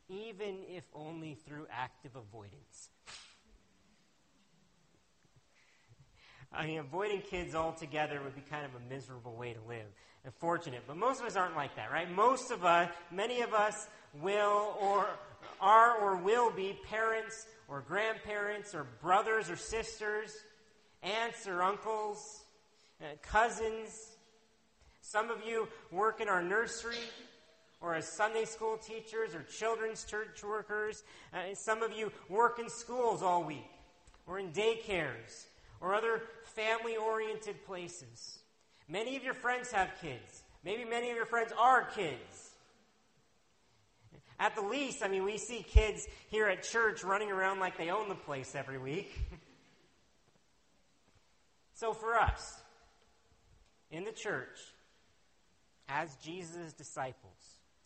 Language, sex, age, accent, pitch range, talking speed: English, male, 40-59, American, 160-220 Hz, 130 wpm